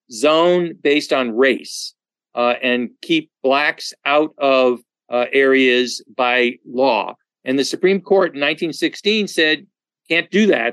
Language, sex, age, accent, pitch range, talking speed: English, male, 50-69, American, 135-180 Hz, 135 wpm